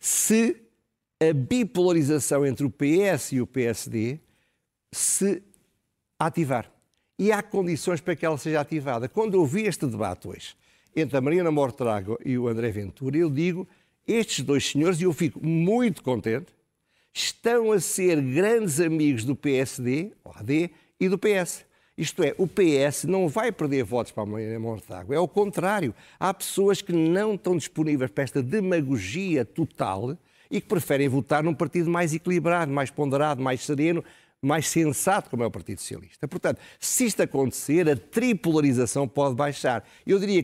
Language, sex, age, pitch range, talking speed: Portuguese, male, 50-69, 130-180 Hz, 160 wpm